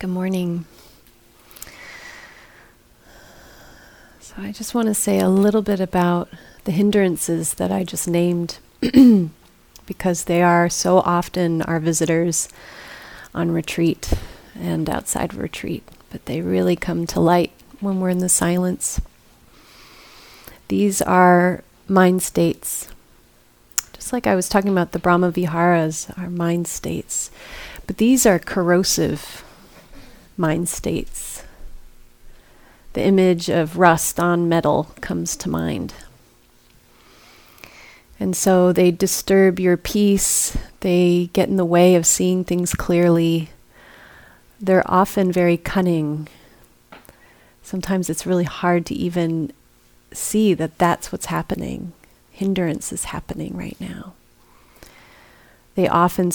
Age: 30-49